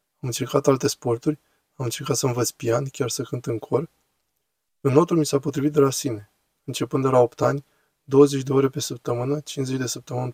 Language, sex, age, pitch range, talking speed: Romanian, male, 20-39, 125-140 Hz, 205 wpm